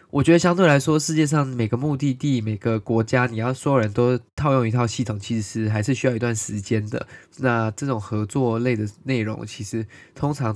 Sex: male